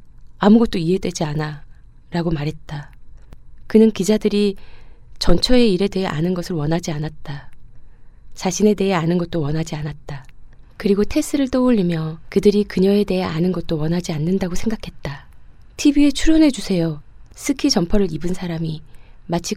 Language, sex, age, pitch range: Korean, female, 20-39, 155-210 Hz